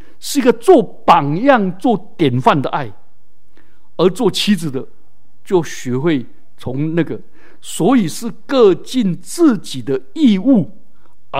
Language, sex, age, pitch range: Chinese, male, 60-79, 145-235 Hz